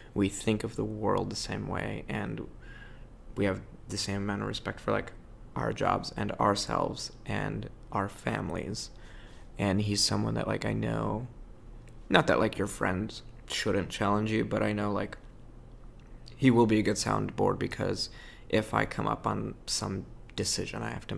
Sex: male